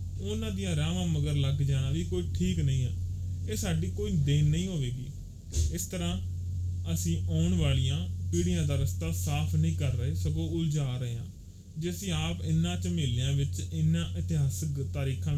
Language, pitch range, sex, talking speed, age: Punjabi, 85-135 Hz, male, 170 wpm, 30-49